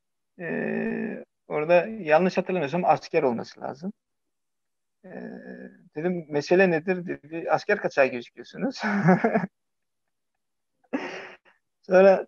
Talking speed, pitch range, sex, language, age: 80 wpm, 150-195 Hz, male, Turkish, 50-69